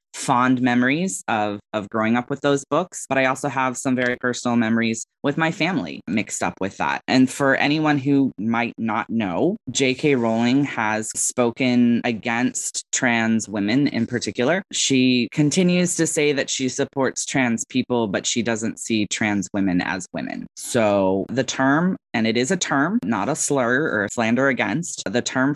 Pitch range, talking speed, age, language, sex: 115-135 Hz, 175 wpm, 20-39, English, female